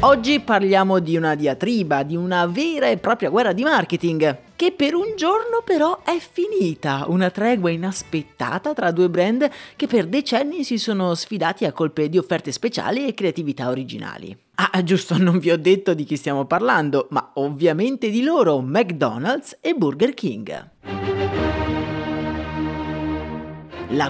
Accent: native